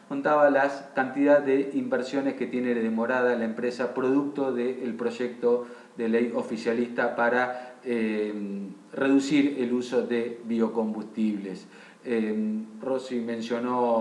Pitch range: 115-140 Hz